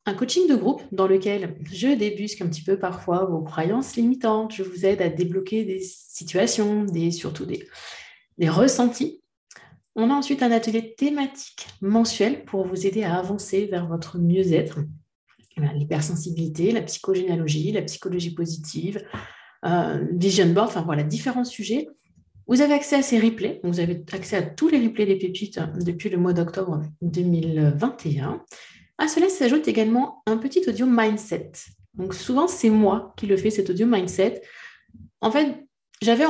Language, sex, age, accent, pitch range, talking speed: French, female, 30-49, French, 170-225 Hz, 155 wpm